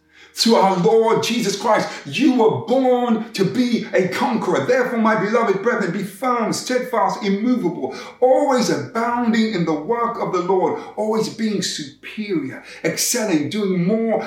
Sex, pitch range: male, 185-245 Hz